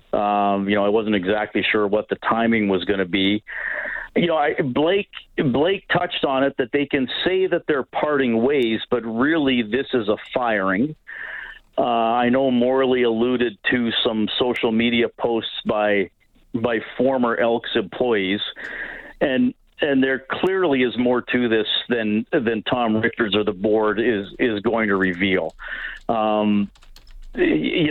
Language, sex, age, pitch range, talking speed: English, male, 50-69, 105-130 Hz, 155 wpm